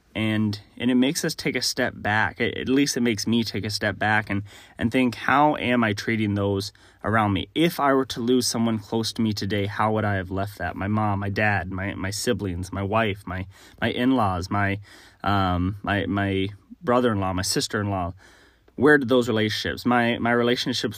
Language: English